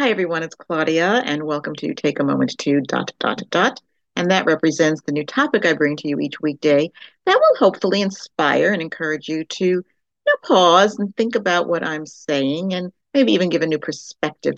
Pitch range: 145-190 Hz